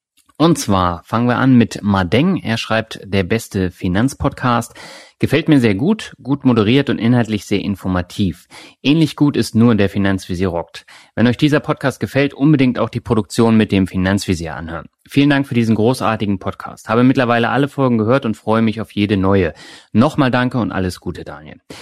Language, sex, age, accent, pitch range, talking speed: German, male, 30-49, German, 95-130 Hz, 180 wpm